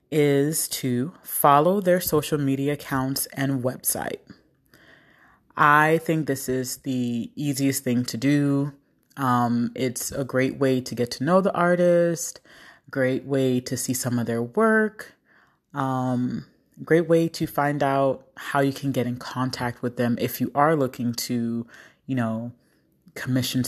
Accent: American